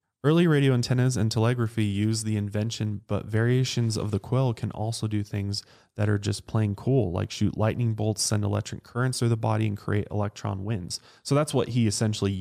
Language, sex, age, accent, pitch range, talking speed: English, male, 20-39, American, 100-120 Hz, 200 wpm